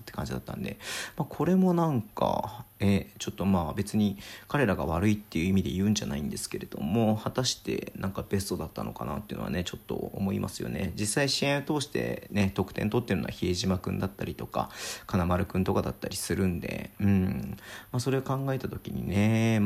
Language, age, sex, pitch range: Japanese, 40-59, male, 95-115 Hz